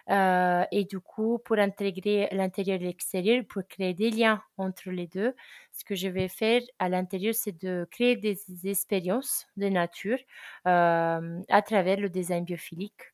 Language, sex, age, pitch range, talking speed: French, female, 20-39, 180-205 Hz, 165 wpm